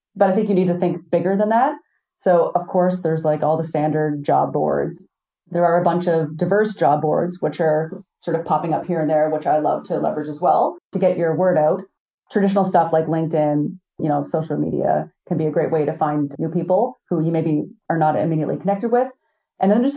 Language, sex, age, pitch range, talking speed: English, female, 30-49, 155-190 Hz, 230 wpm